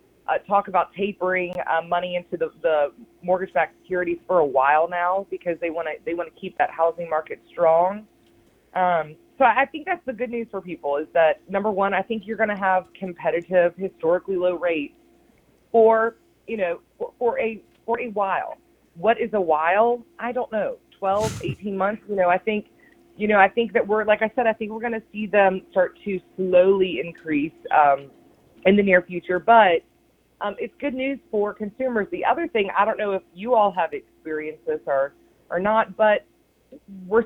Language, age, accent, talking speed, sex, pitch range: English, 30-49, American, 200 wpm, female, 170-220 Hz